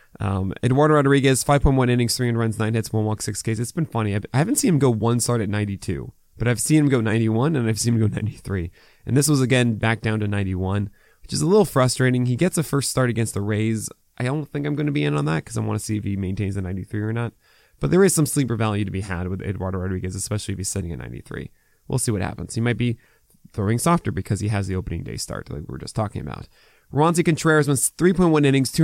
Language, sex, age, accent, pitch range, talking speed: English, male, 20-39, American, 105-145 Hz, 265 wpm